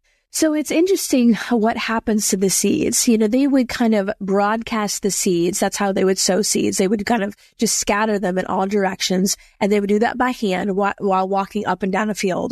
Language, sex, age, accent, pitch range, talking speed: English, female, 20-39, American, 195-230 Hz, 225 wpm